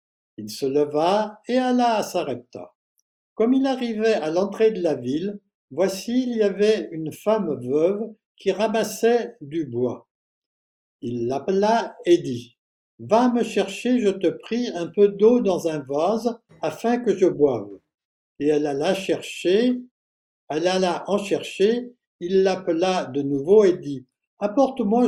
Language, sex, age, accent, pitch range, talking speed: French, male, 60-79, French, 160-220 Hz, 145 wpm